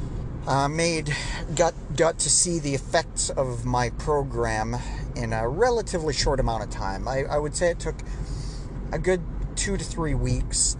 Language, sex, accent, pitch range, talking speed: English, male, American, 120-140 Hz, 165 wpm